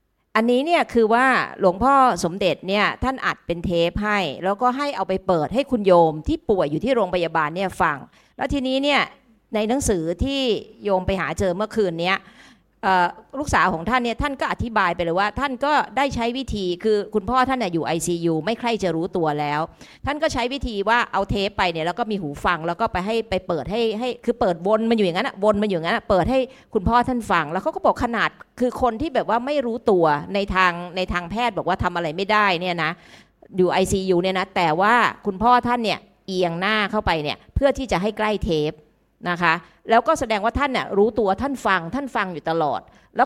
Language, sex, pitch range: Thai, female, 180-245 Hz